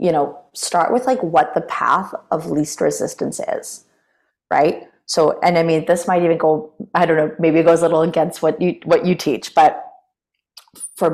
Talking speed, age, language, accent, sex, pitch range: 200 wpm, 30-49, English, American, female, 155-185 Hz